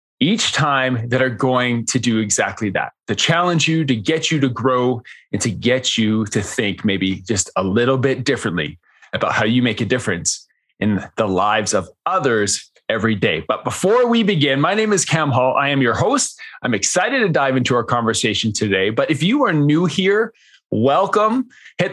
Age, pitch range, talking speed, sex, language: 20-39, 125-175 Hz, 195 wpm, male, English